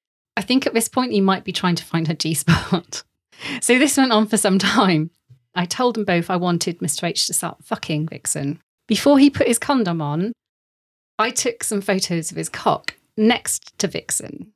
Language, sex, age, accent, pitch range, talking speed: English, female, 40-59, British, 170-205 Hz, 200 wpm